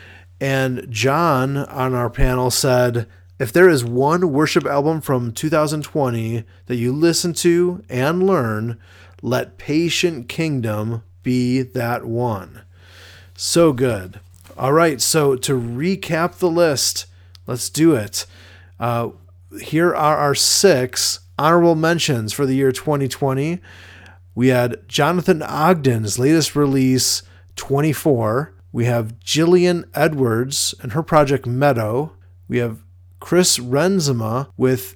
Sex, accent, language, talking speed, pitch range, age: male, American, English, 120 wpm, 110-150 Hz, 30-49